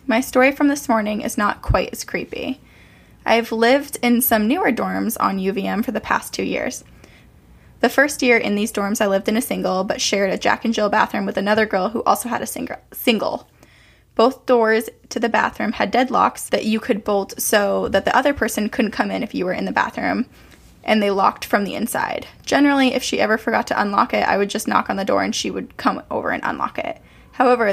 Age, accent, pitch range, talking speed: 10-29, American, 210-250 Hz, 225 wpm